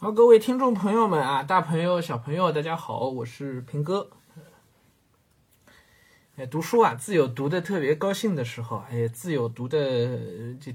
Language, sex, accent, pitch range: Chinese, male, native, 115-165 Hz